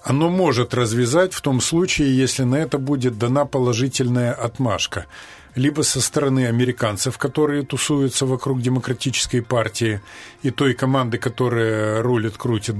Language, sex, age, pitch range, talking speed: Russian, male, 40-59, 120-145 Hz, 125 wpm